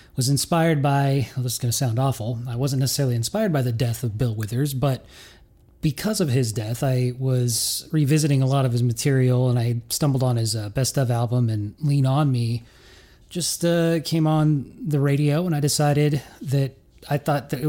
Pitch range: 125-155 Hz